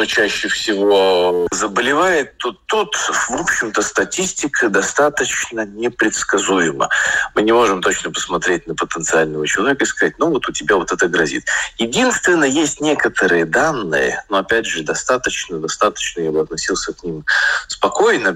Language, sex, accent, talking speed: Russian, male, native, 135 wpm